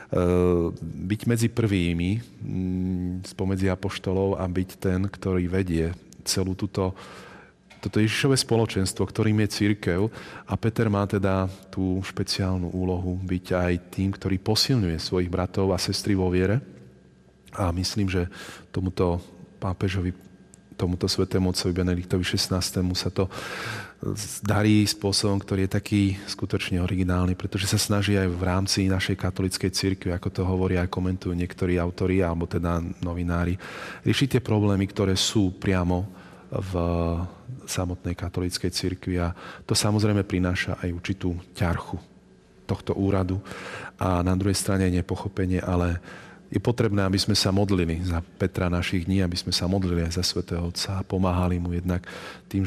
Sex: male